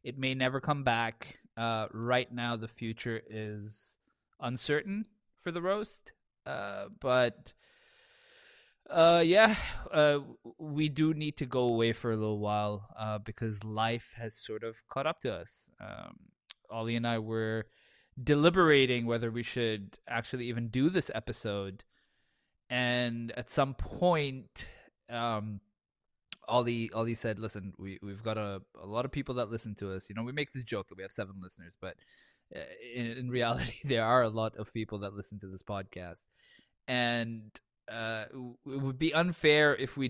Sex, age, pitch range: male, 20-39, 110-135 Hz